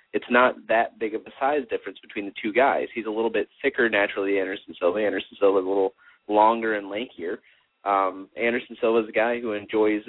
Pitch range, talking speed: 100-115 Hz, 210 wpm